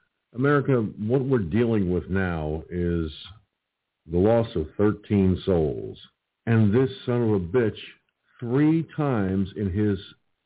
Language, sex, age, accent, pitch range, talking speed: English, male, 50-69, American, 95-130 Hz, 125 wpm